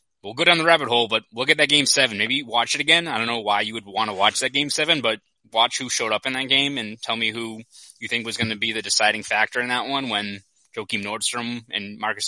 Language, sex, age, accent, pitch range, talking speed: English, male, 20-39, American, 105-125 Hz, 280 wpm